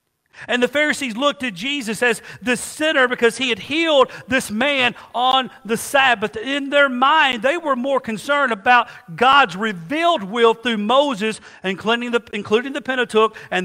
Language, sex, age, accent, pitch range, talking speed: English, male, 50-69, American, 150-240 Hz, 160 wpm